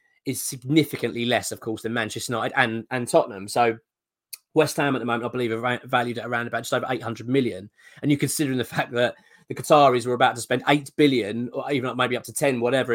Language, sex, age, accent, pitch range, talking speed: English, male, 20-39, British, 120-155 Hz, 230 wpm